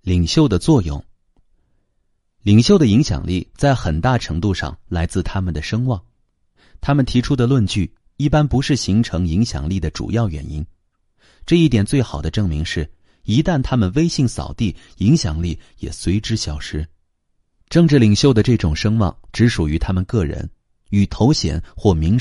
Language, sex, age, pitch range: Chinese, male, 30-49, 85-120 Hz